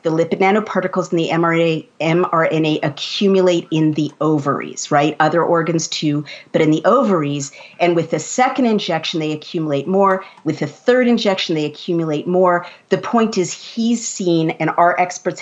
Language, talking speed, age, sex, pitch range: English, 165 wpm, 50-69, female, 155-190 Hz